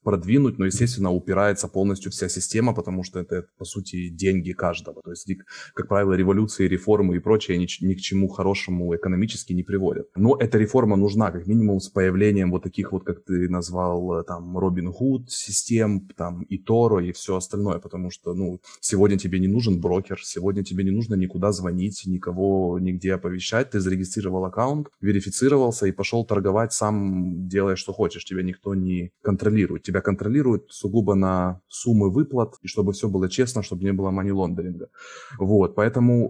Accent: native